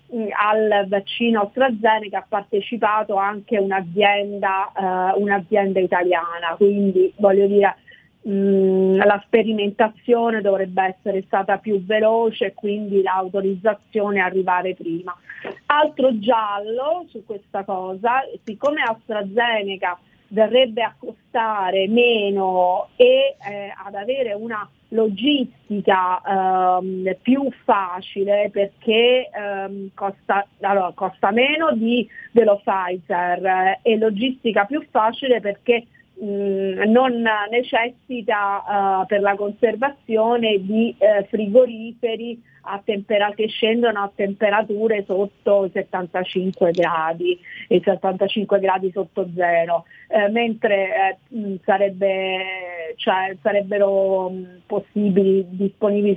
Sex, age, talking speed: female, 30-49, 100 wpm